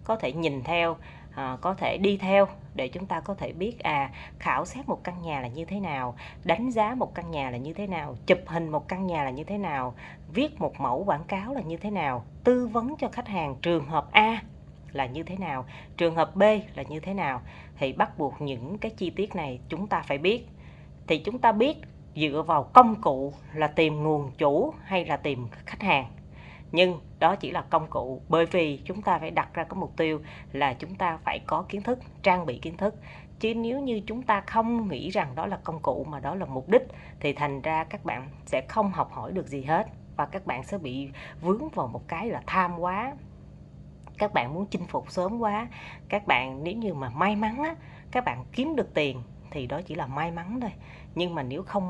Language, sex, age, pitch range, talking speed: Vietnamese, female, 30-49, 150-205 Hz, 230 wpm